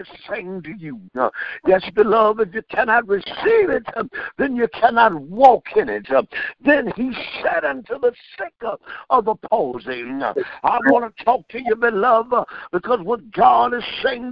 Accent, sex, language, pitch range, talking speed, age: American, male, English, 220-270 Hz, 155 wpm, 60-79